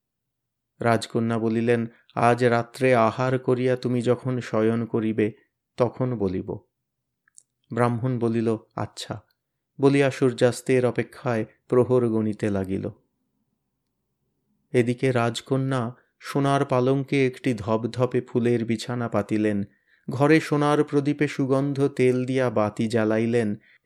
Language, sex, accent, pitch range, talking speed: Bengali, male, native, 110-130 Hz, 85 wpm